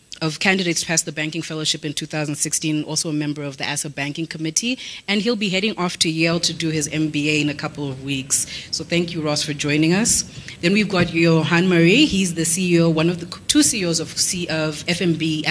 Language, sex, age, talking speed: English, female, 30-49, 215 wpm